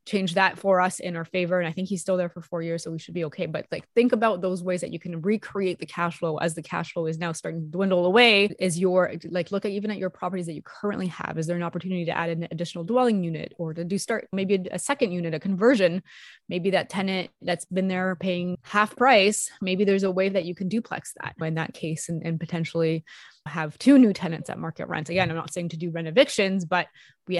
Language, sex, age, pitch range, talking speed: English, female, 20-39, 170-195 Hz, 260 wpm